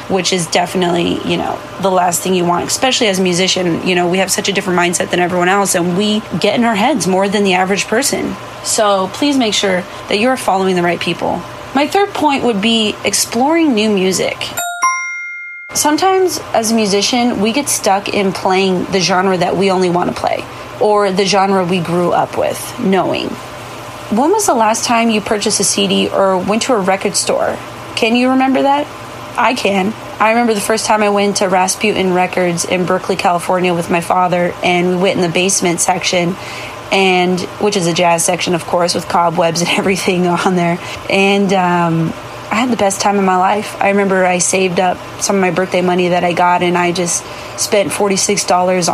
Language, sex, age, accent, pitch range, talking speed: English, female, 30-49, American, 180-215 Hz, 200 wpm